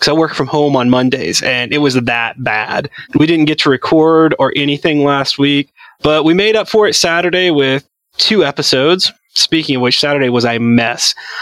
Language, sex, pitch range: English, male, 135-175 Hz